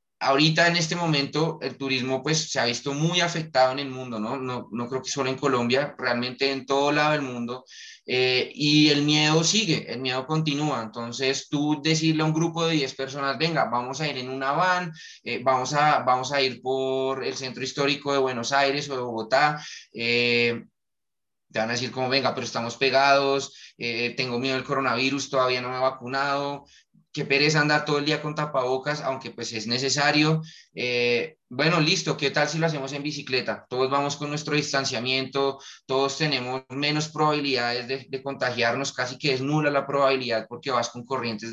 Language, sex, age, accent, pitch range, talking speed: Spanish, male, 20-39, Colombian, 125-145 Hz, 185 wpm